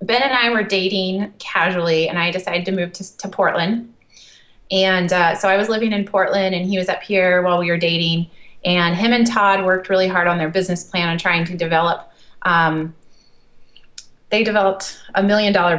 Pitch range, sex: 170-190 Hz, female